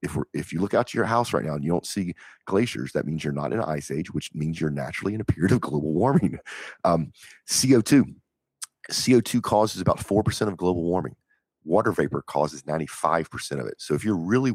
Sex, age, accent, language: male, 40-59, American, English